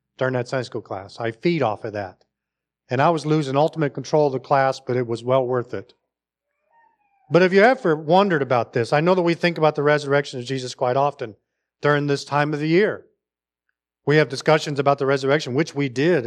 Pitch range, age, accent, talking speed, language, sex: 120-165 Hz, 40-59, American, 220 wpm, English, male